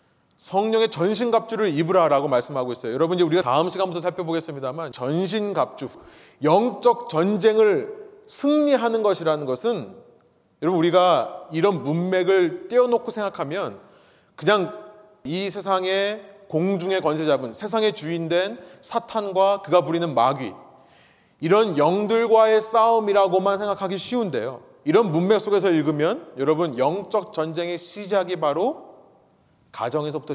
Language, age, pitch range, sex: Korean, 30-49, 150-200 Hz, male